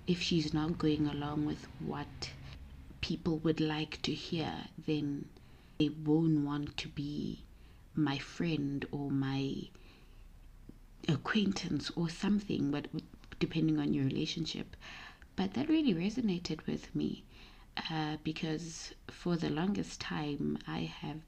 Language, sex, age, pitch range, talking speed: English, female, 20-39, 145-175 Hz, 125 wpm